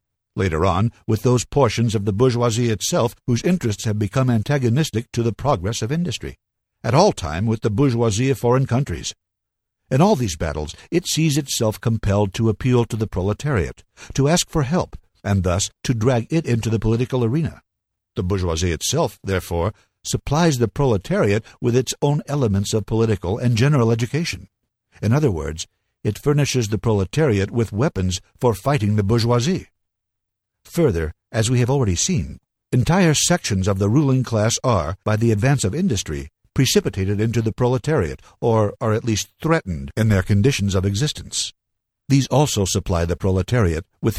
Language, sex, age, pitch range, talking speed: English, male, 60-79, 100-130 Hz, 165 wpm